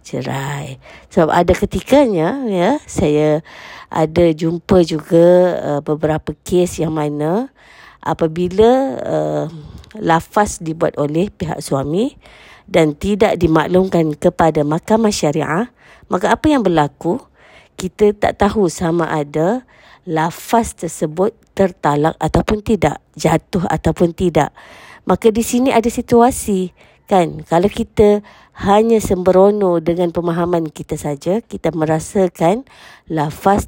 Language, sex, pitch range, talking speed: Malay, female, 160-195 Hz, 110 wpm